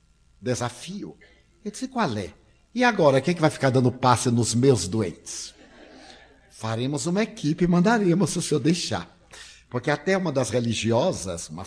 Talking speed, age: 150 wpm, 60-79